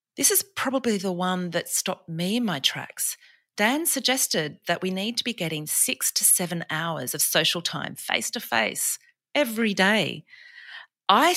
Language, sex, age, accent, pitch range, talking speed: English, female, 40-59, Australian, 160-200 Hz, 160 wpm